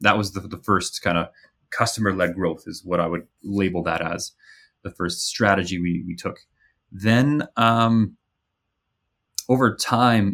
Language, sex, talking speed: English, male, 150 wpm